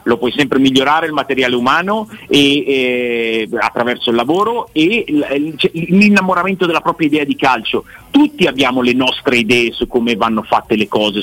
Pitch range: 115-150 Hz